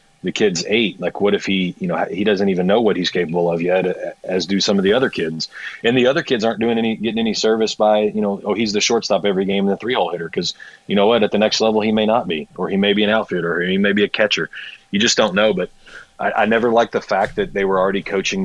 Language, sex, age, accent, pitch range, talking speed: English, male, 30-49, American, 90-105 Hz, 290 wpm